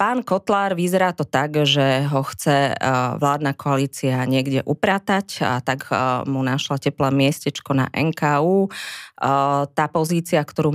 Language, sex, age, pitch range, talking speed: Slovak, female, 20-39, 135-150 Hz, 130 wpm